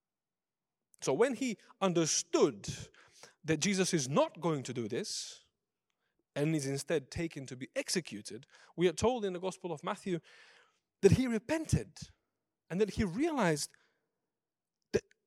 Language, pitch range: English, 140-220 Hz